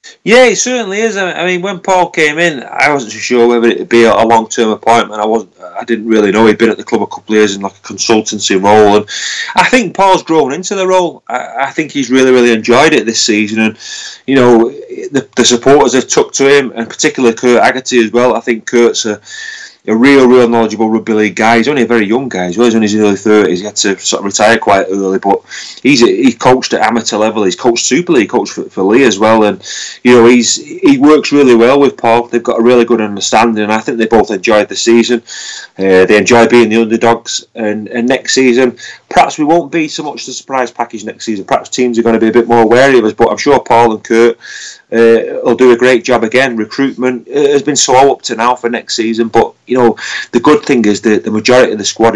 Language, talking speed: English, 250 wpm